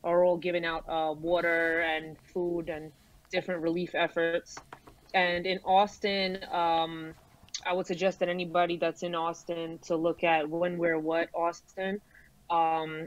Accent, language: American, English